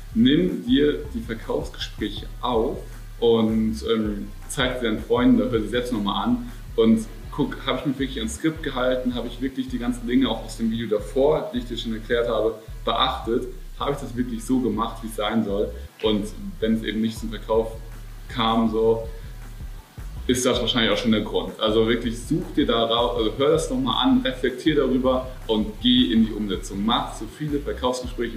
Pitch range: 110-130 Hz